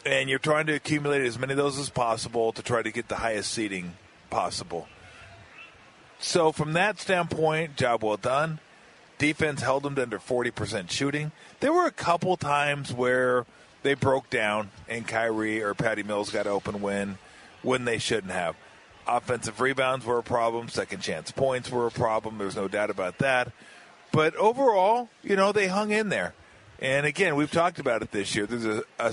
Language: English